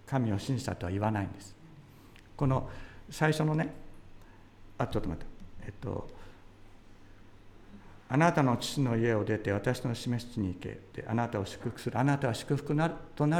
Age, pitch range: 50-69, 100-140 Hz